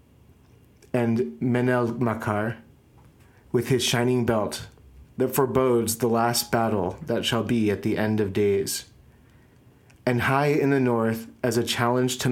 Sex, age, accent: male, 30-49, American